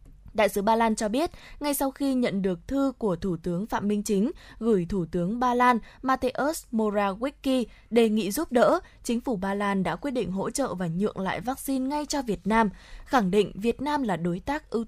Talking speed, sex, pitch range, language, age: 220 wpm, female, 195-255 Hz, Vietnamese, 20-39